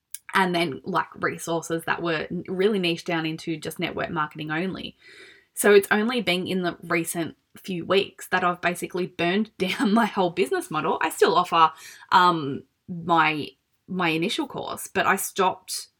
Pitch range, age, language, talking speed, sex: 160-185 Hz, 20-39, English, 160 wpm, female